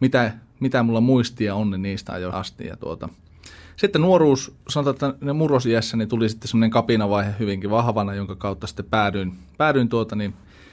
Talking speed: 175 wpm